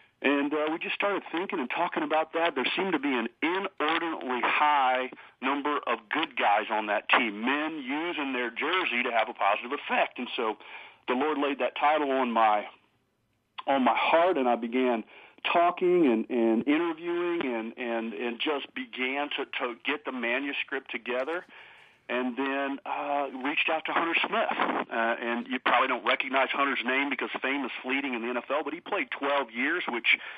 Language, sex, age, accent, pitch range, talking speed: English, male, 40-59, American, 120-155 Hz, 175 wpm